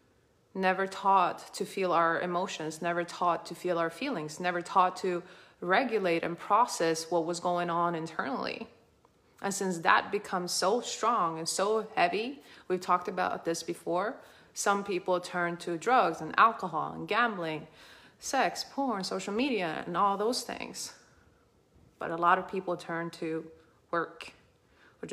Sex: female